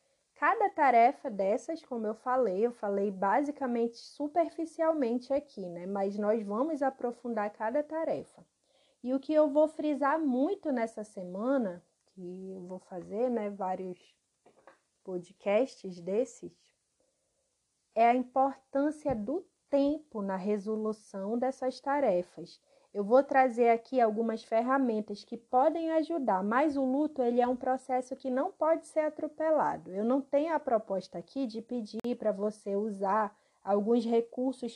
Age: 20-39